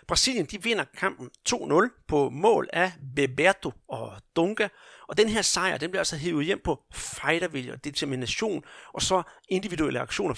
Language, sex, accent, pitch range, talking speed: Danish, male, native, 140-185 Hz, 155 wpm